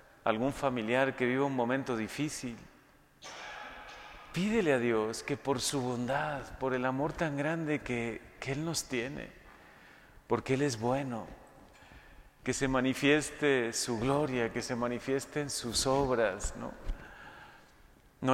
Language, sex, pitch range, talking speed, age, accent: Spanish, male, 115-140 Hz, 130 wpm, 40-59, Mexican